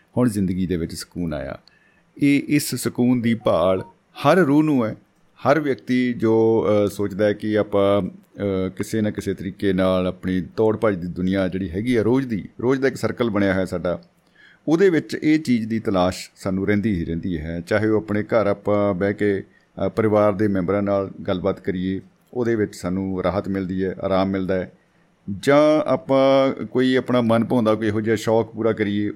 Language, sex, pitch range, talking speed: Punjabi, male, 95-115 Hz, 150 wpm